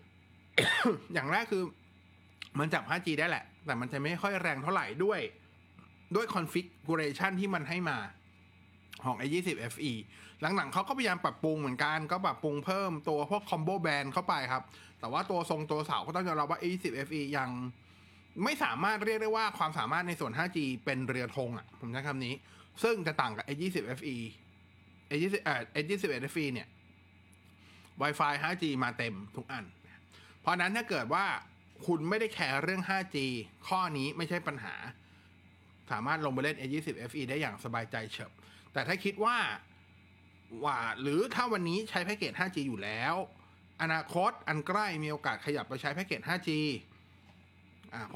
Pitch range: 100-170 Hz